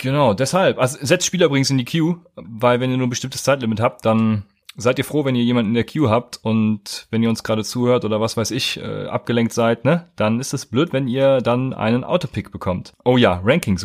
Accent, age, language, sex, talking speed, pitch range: German, 30-49, German, male, 240 wpm, 110-130 Hz